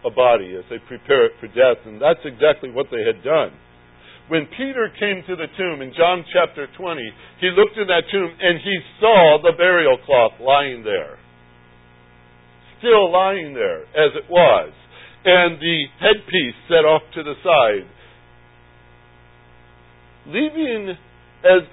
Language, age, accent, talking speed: English, 60-79, American, 150 wpm